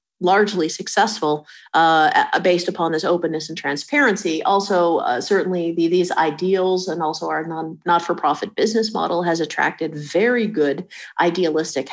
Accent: American